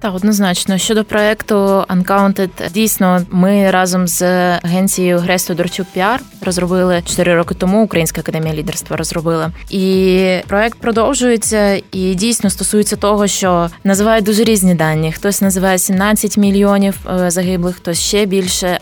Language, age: Ukrainian, 20-39